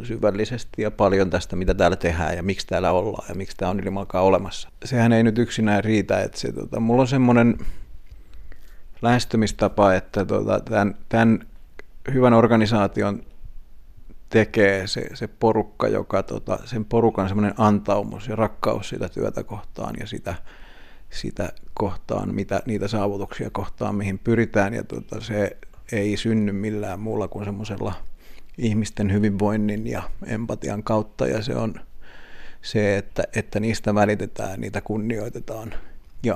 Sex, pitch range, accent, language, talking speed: male, 95-110 Hz, native, Finnish, 140 wpm